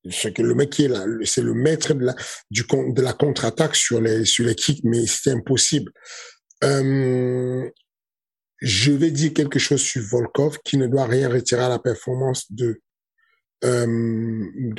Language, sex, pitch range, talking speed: French, male, 115-135 Hz, 160 wpm